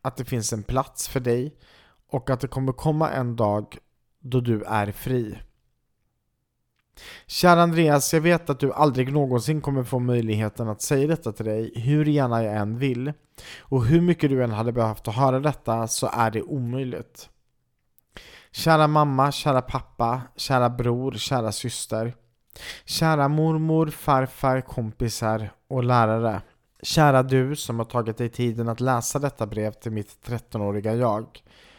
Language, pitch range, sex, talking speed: Swedish, 110-140 Hz, male, 155 wpm